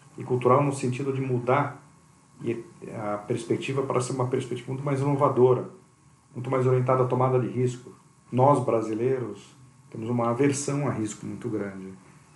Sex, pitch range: male, 125-150 Hz